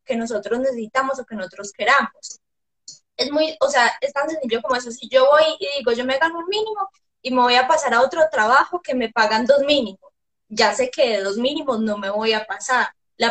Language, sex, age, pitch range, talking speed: Spanish, female, 10-29, 220-280 Hz, 230 wpm